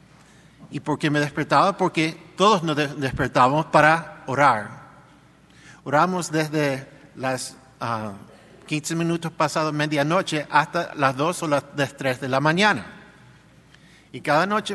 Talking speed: 125 wpm